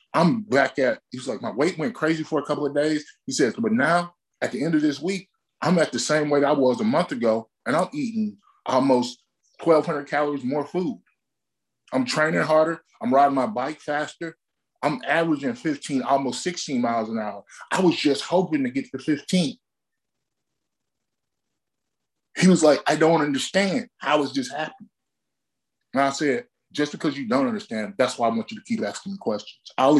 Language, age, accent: English, 20-39, American